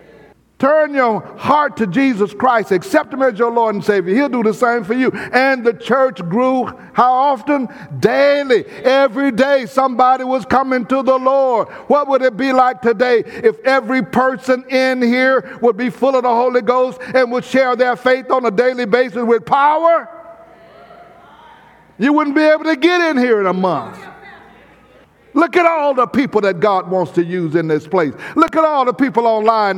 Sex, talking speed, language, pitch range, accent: male, 185 wpm, English, 220-270 Hz, American